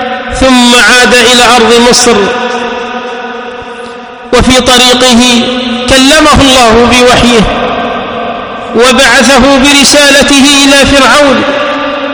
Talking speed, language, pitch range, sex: 70 wpm, English, 235-270 Hz, male